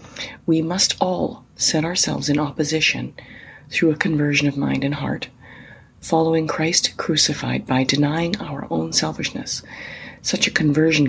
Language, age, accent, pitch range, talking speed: English, 40-59, American, 135-160 Hz, 135 wpm